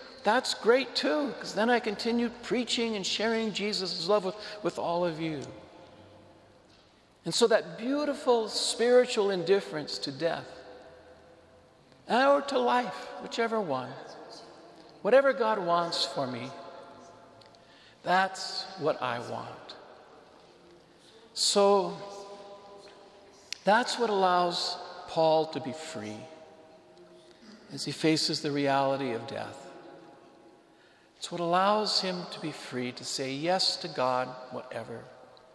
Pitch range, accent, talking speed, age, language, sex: 125-190 Hz, American, 115 wpm, 60-79, English, male